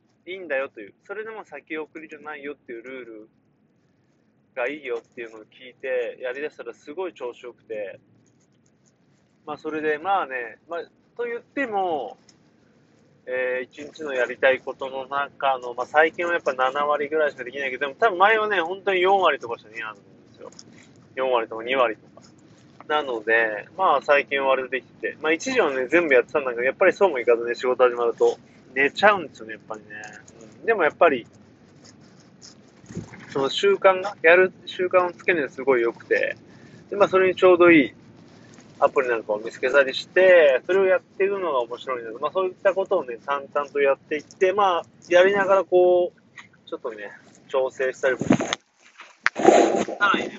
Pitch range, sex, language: 130-195 Hz, male, Japanese